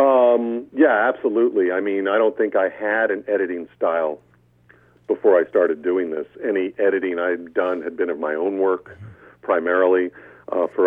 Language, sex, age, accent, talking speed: English, male, 50-69, American, 170 wpm